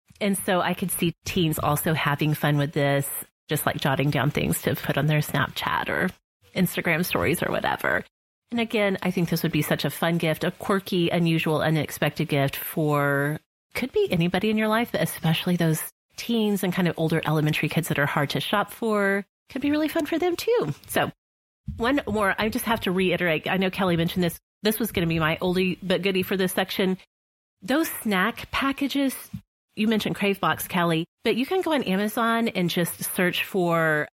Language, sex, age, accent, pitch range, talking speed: English, female, 30-49, American, 155-210 Hz, 200 wpm